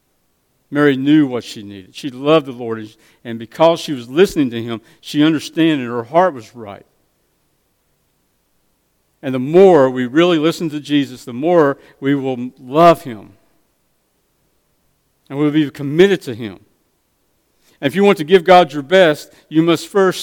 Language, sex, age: English, male, 50-69